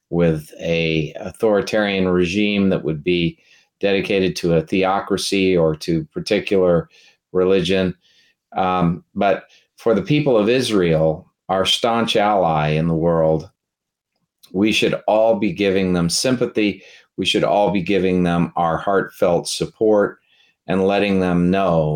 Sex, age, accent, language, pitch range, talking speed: male, 40-59, American, English, 85-95 Hz, 130 wpm